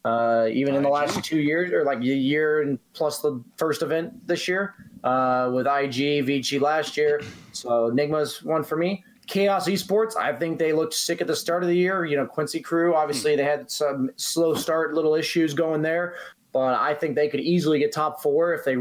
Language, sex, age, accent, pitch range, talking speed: English, male, 20-39, American, 135-160 Hz, 215 wpm